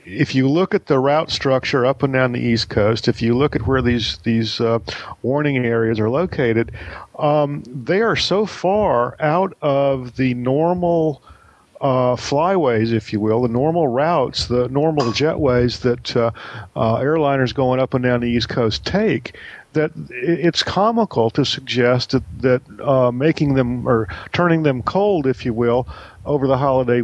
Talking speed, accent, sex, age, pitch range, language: 170 wpm, American, male, 50-69, 120-145 Hz, English